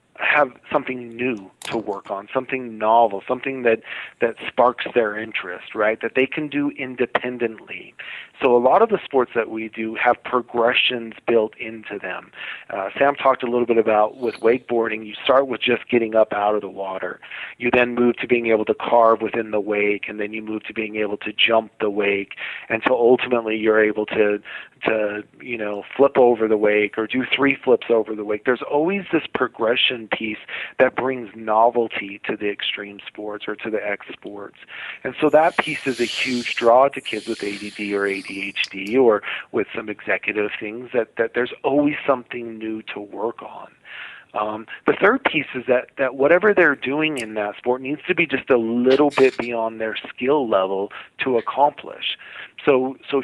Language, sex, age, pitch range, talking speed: English, male, 40-59, 105-130 Hz, 190 wpm